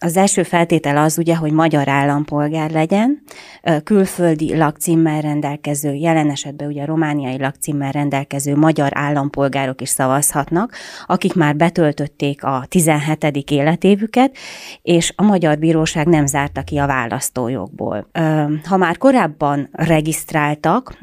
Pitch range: 145-170 Hz